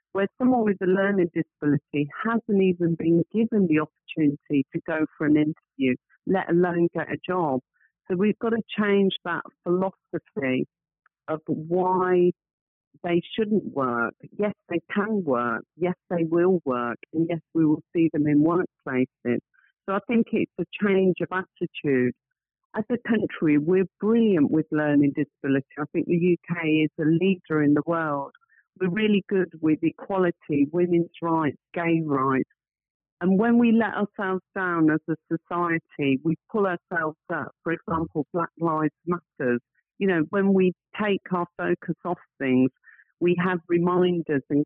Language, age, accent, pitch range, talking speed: English, 50-69, British, 155-190 Hz, 155 wpm